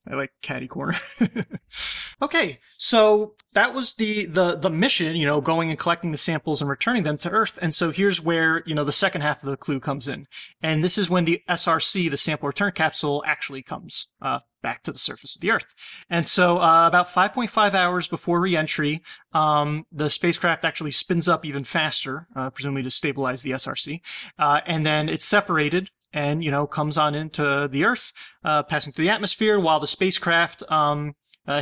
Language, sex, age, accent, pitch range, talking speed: English, male, 30-49, American, 145-180 Hz, 190 wpm